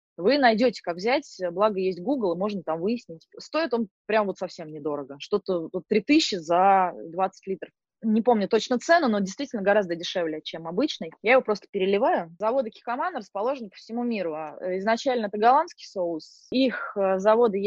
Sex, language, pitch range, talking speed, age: female, Russian, 180-235 Hz, 165 wpm, 20-39